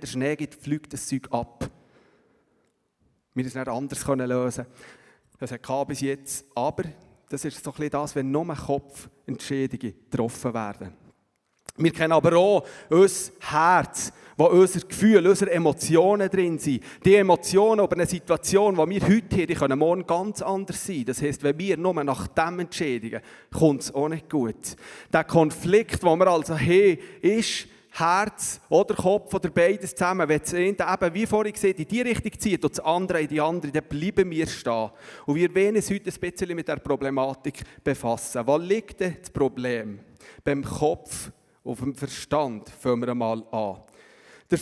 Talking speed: 175 wpm